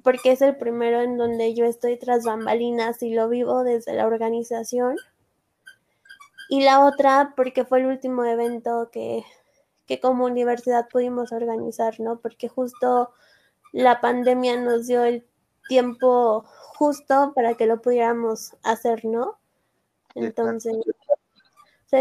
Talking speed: 135 wpm